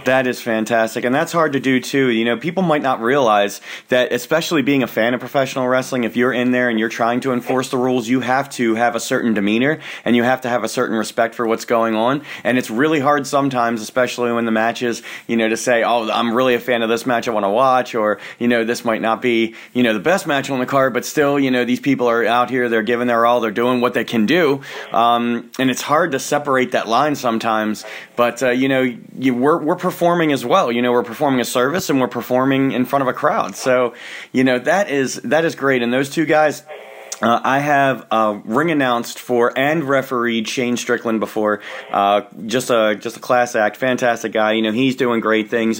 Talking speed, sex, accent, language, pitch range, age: 245 wpm, male, American, English, 115-135 Hz, 30-49